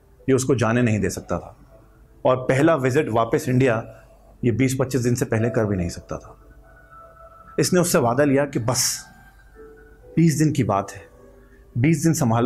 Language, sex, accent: Hindi, male, native